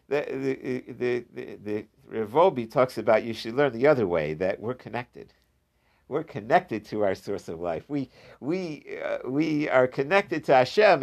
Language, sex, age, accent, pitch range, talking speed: English, male, 50-69, American, 130-195 Hz, 170 wpm